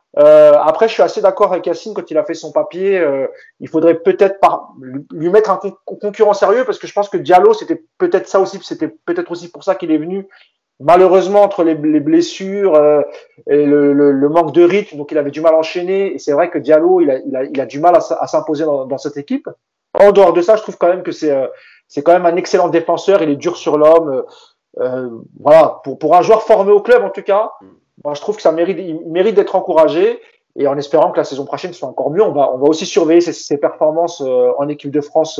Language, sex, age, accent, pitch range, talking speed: French, male, 30-49, French, 150-220 Hz, 255 wpm